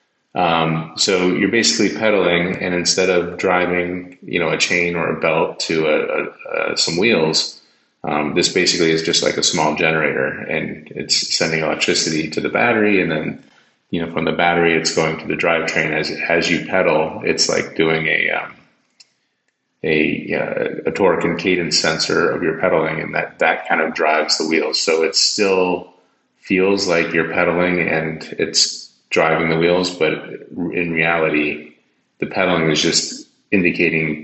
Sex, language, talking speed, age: male, English, 170 wpm, 30-49